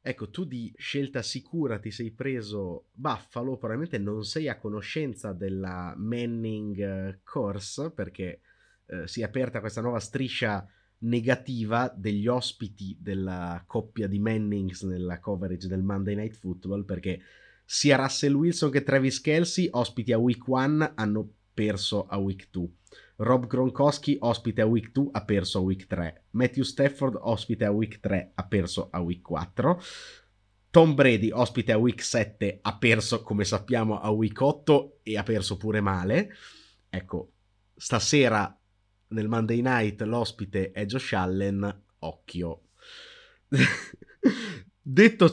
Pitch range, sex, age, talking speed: 100-130 Hz, male, 30-49, 140 wpm